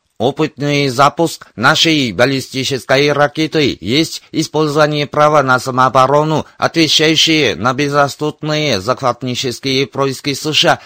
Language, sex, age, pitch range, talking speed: Russian, male, 50-69, 130-155 Hz, 90 wpm